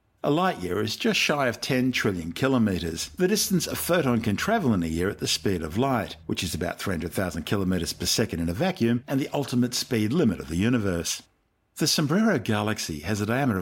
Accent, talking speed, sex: Australian, 210 wpm, male